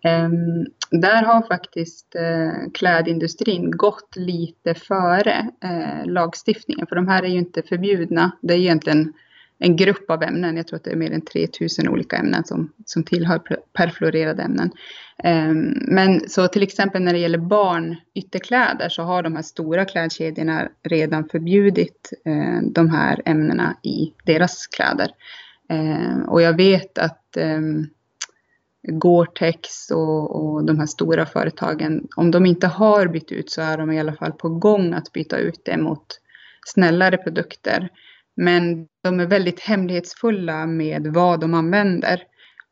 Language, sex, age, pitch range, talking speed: Swedish, female, 20-39, 160-180 Hz, 150 wpm